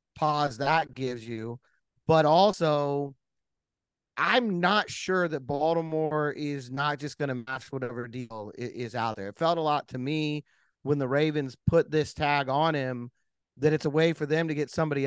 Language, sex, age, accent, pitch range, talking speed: English, male, 30-49, American, 140-170 Hz, 185 wpm